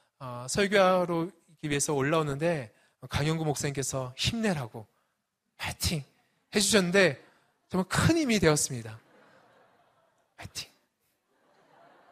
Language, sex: Korean, male